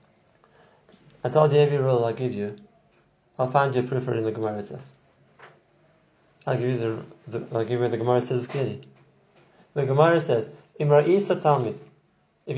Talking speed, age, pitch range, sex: 170 wpm, 30-49, 130-165 Hz, male